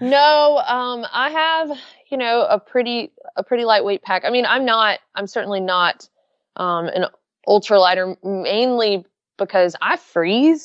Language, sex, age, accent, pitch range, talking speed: English, female, 20-39, American, 170-225 Hz, 150 wpm